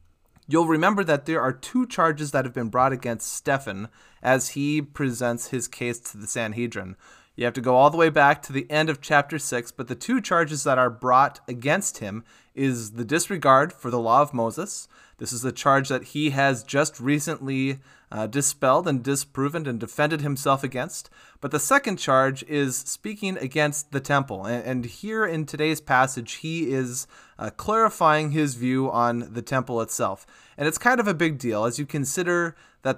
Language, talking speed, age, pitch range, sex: English, 190 wpm, 20-39, 125-160 Hz, male